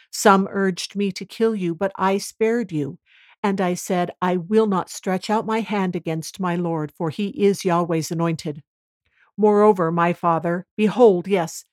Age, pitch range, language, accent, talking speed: 60-79, 180-225 Hz, English, American, 170 wpm